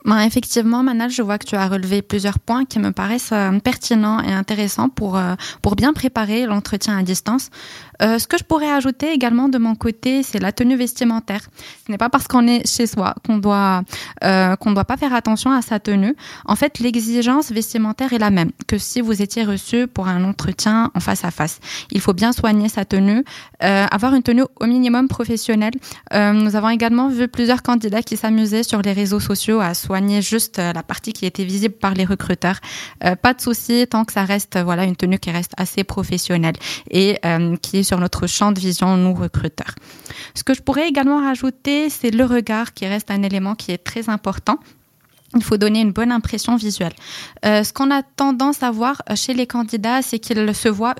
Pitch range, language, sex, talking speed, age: 195-240 Hz, French, female, 210 wpm, 20-39